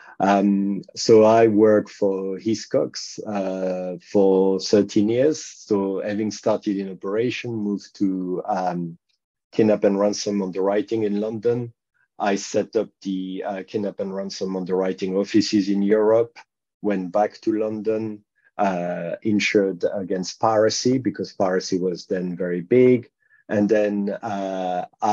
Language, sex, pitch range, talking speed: English, male, 95-105 Hz, 135 wpm